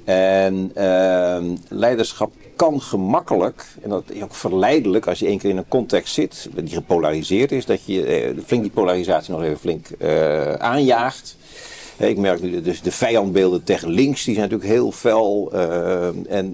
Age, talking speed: 50-69, 180 wpm